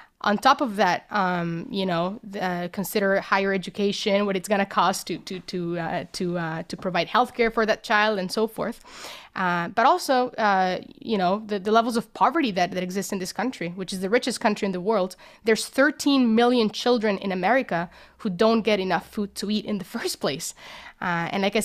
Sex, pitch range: female, 195-245 Hz